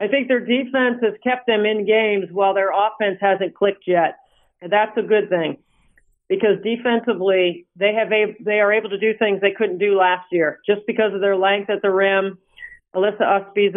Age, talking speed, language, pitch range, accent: 50-69, 200 wpm, English, 195-235 Hz, American